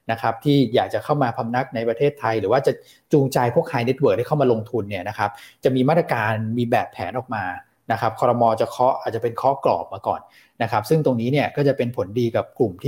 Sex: male